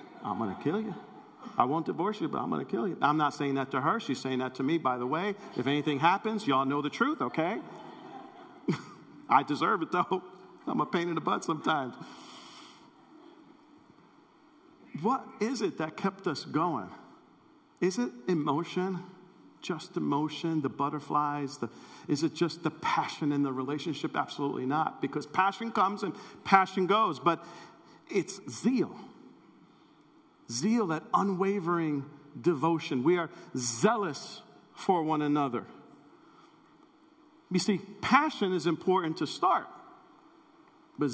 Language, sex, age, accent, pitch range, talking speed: English, male, 50-69, American, 145-220 Hz, 145 wpm